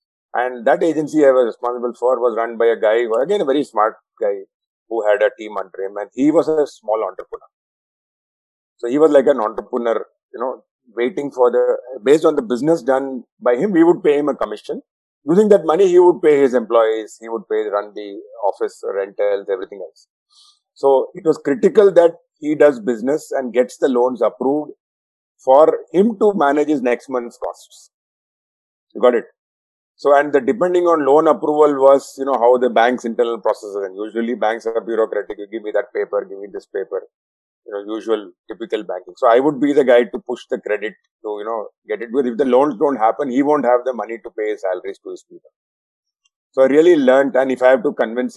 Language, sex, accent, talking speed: English, male, Indian, 210 wpm